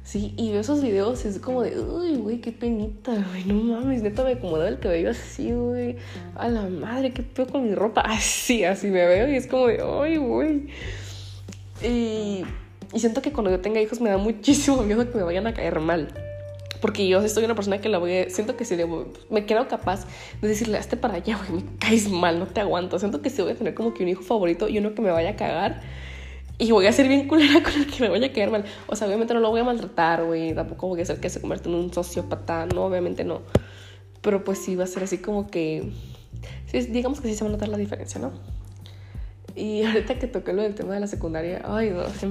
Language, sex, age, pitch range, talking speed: Spanish, female, 20-39, 165-230 Hz, 245 wpm